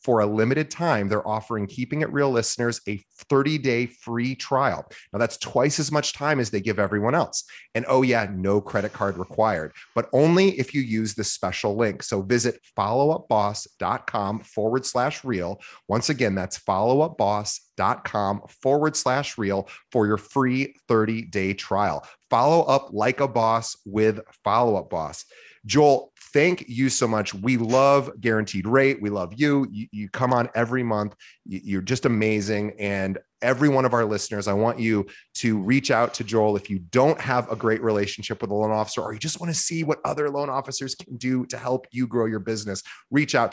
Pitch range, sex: 105-135 Hz, male